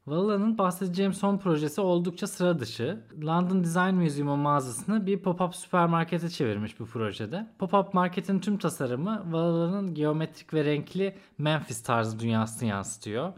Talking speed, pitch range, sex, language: 130 wpm, 125-175 Hz, male, Turkish